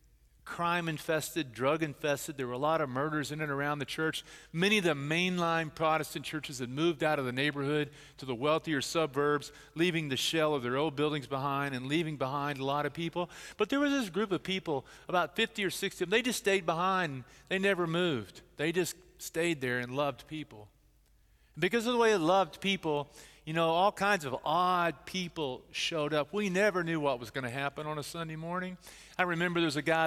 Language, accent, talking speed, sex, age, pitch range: English, American, 210 wpm, male, 40-59, 140-170 Hz